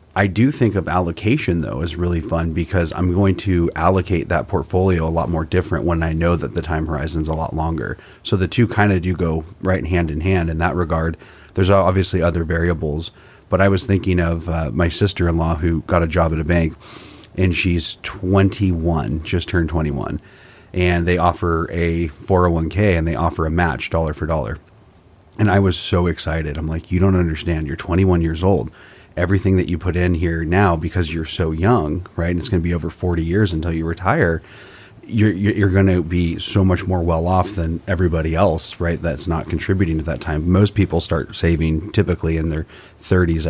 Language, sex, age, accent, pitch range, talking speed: English, male, 30-49, American, 80-95 Hz, 205 wpm